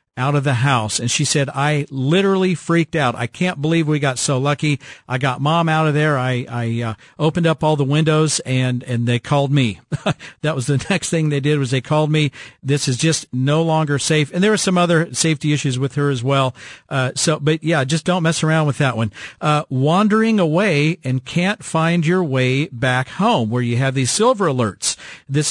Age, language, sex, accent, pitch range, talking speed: 50-69, English, male, American, 130-165 Hz, 220 wpm